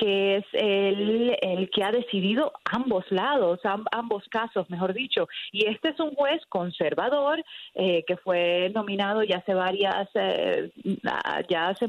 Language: Spanish